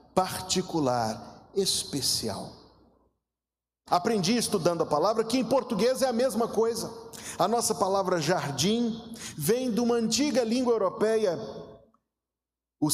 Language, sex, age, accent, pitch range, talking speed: Portuguese, male, 50-69, Brazilian, 180-235 Hz, 110 wpm